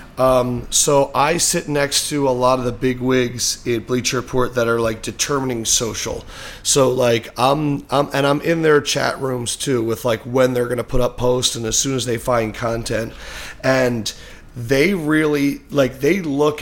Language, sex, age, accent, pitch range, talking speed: English, male, 30-49, American, 120-150 Hz, 190 wpm